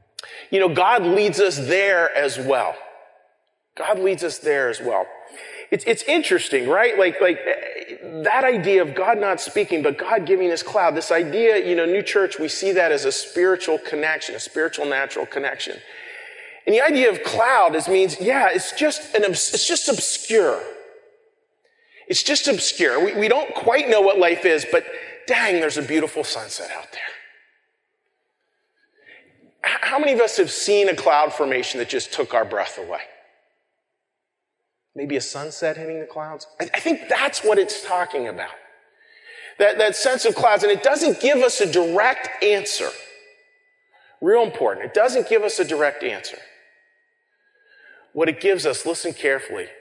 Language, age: English, 40-59